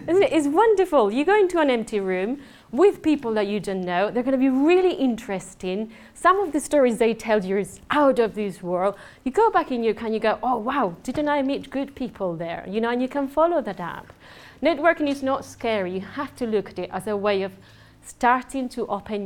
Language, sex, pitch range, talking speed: English, female, 190-265 Hz, 230 wpm